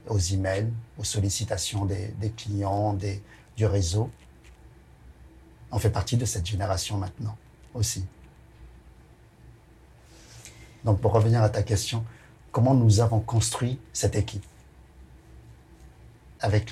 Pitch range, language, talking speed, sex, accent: 95-115 Hz, French, 110 wpm, male, French